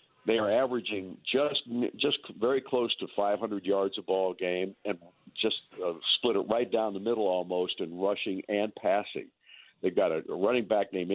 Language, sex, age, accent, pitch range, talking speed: English, male, 60-79, American, 90-115 Hz, 170 wpm